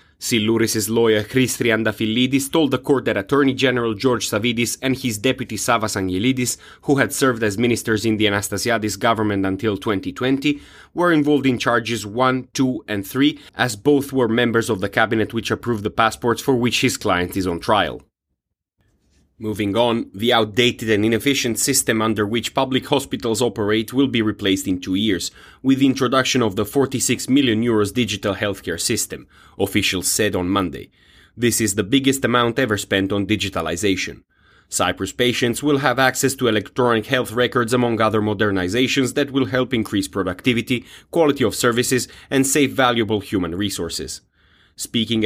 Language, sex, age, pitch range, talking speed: English, male, 30-49, 105-130 Hz, 160 wpm